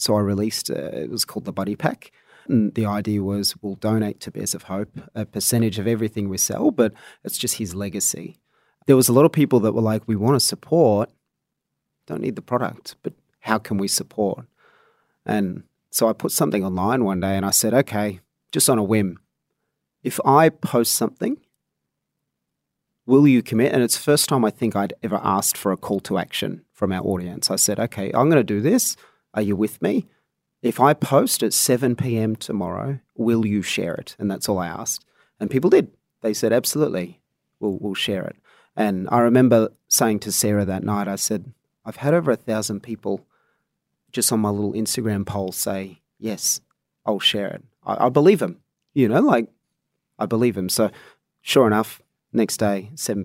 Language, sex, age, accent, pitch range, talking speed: English, male, 30-49, Australian, 100-120 Hz, 195 wpm